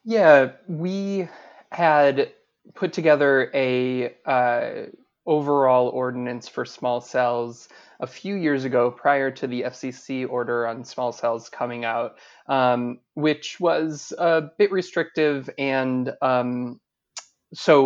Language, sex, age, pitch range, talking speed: English, male, 20-39, 125-145 Hz, 120 wpm